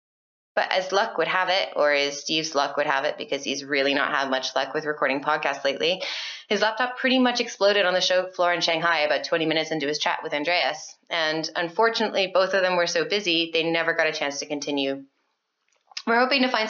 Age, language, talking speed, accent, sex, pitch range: 20-39, English, 225 wpm, American, female, 155-215 Hz